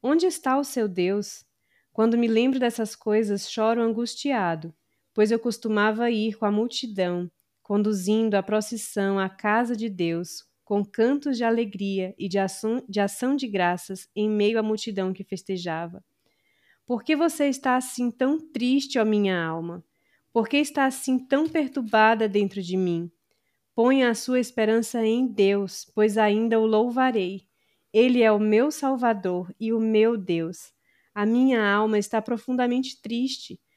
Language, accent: Portuguese, Brazilian